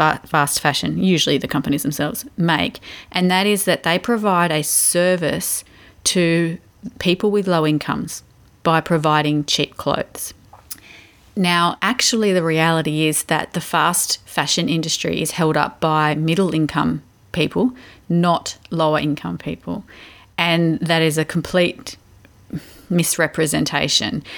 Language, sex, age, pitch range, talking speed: English, female, 30-49, 150-170 Hz, 125 wpm